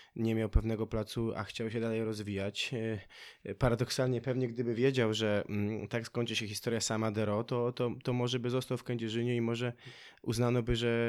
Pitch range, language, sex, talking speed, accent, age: 110-125 Hz, Polish, male, 180 wpm, native, 20-39